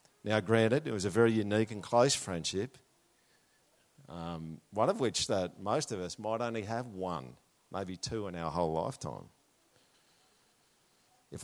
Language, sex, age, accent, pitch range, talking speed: English, male, 50-69, Australian, 100-130 Hz, 150 wpm